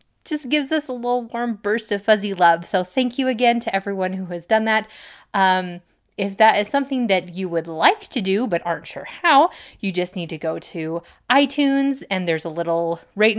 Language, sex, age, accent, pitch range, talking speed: English, female, 20-39, American, 180-240 Hz, 210 wpm